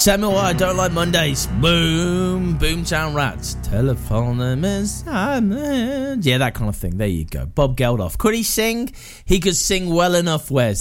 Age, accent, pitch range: 20-39, British, 125-185 Hz